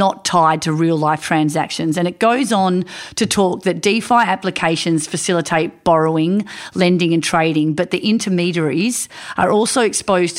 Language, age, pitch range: English, 40-59, 160-185 Hz